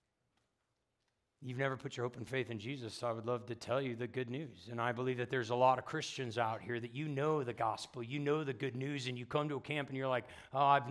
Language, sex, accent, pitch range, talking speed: English, male, American, 115-150 Hz, 280 wpm